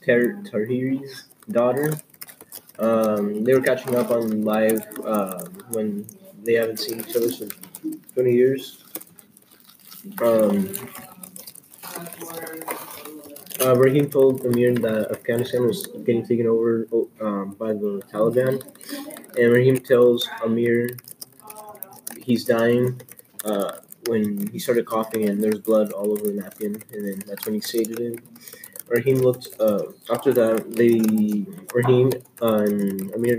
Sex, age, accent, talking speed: male, 20-39, American, 120 wpm